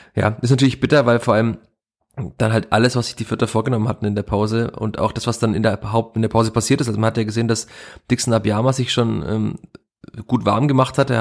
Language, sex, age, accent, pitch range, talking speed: German, male, 20-39, German, 105-120 Hz, 255 wpm